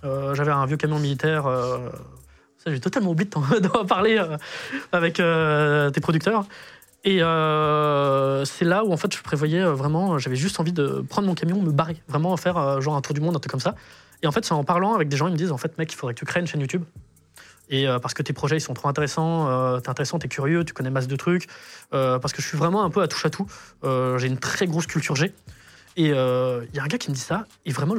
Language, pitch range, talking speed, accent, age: French, 140-190 Hz, 270 wpm, French, 20-39